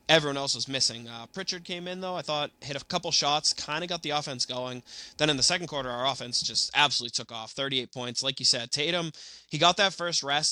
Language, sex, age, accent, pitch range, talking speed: English, male, 20-39, American, 120-155 Hz, 245 wpm